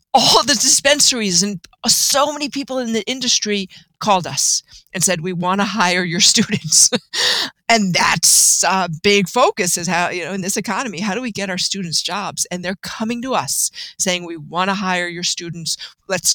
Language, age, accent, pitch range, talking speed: English, 50-69, American, 170-215 Hz, 190 wpm